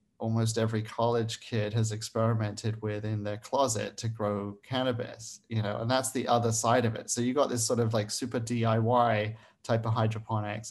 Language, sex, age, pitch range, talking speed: English, male, 30-49, 110-125 Hz, 190 wpm